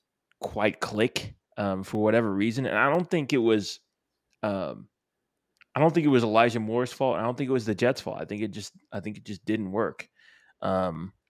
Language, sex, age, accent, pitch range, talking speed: English, male, 20-39, American, 105-120 Hz, 210 wpm